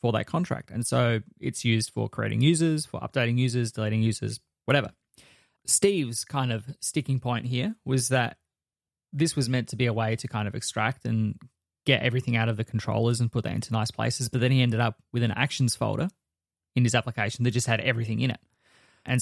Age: 20-39